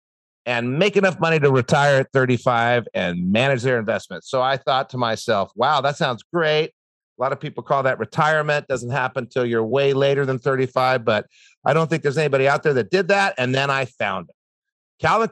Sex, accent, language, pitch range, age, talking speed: male, American, English, 130-190 Hz, 50-69, 210 wpm